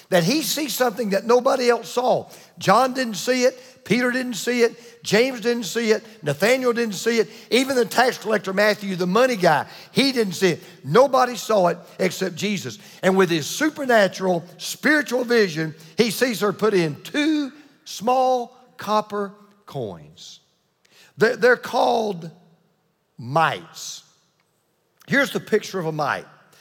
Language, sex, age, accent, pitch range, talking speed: English, male, 50-69, American, 175-245 Hz, 145 wpm